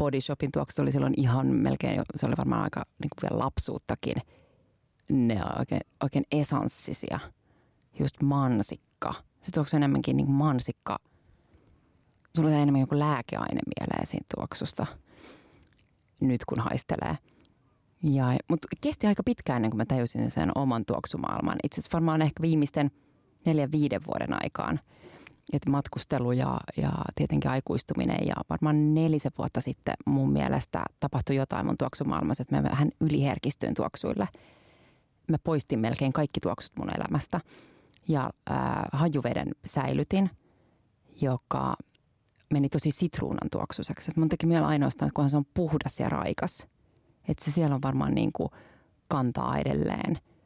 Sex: female